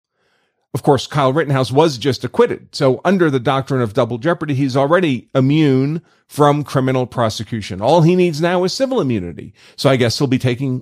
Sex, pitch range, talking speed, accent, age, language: male, 120-160 Hz, 185 wpm, American, 40-59, English